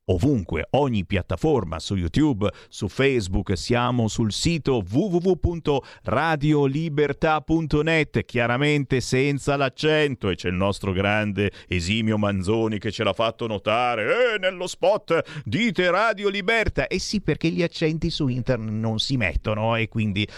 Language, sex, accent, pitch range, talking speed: Italian, male, native, 110-175 Hz, 135 wpm